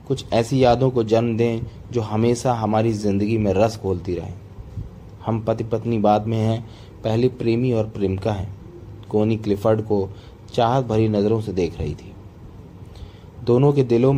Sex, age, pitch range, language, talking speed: male, 30-49, 100-115 Hz, Hindi, 160 wpm